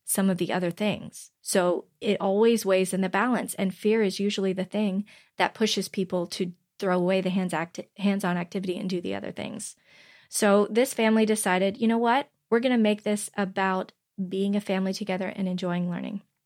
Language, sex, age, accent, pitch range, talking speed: English, female, 20-39, American, 190-220 Hz, 190 wpm